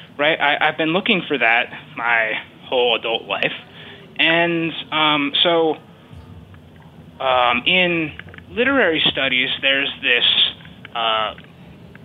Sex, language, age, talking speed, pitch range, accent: male, English, 20-39, 105 wpm, 120-160 Hz, American